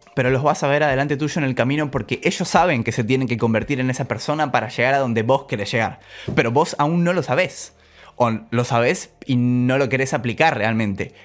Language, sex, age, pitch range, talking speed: Spanish, male, 20-39, 115-155 Hz, 230 wpm